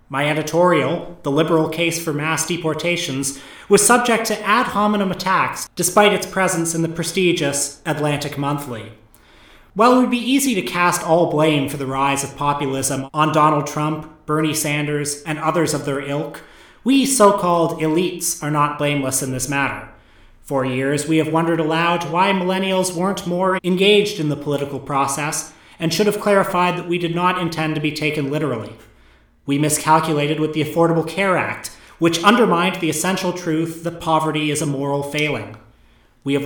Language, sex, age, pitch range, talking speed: English, male, 30-49, 145-180 Hz, 170 wpm